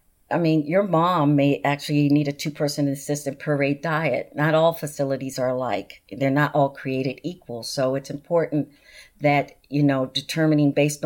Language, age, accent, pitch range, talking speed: English, 50-69, American, 140-150 Hz, 165 wpm